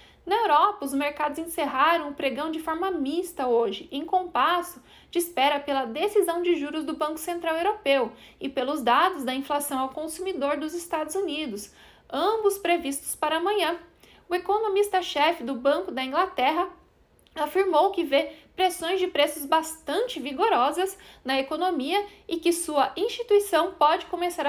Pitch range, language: 280-360 Hz, Portuguese